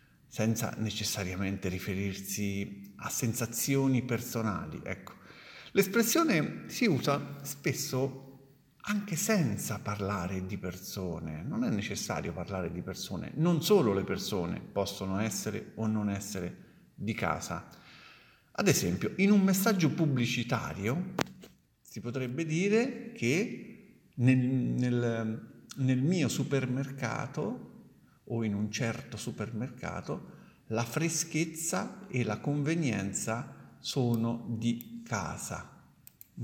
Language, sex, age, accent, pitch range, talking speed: Italian, male, 50-69, native, 105-145 Hz, 100 wpm